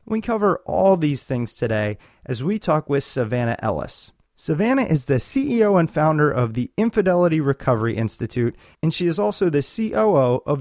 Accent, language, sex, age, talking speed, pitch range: American, English, male, 30-49, 170 wpm, 130-185 Hz